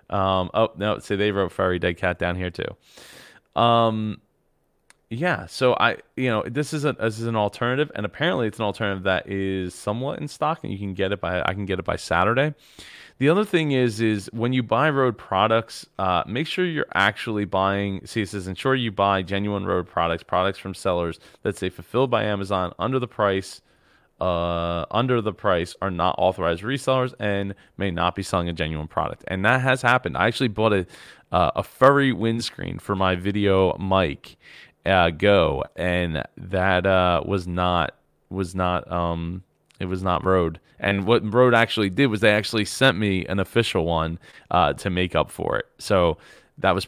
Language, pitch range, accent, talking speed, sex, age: English, 90-115 Hz, American, 195 wpm, male, 20-39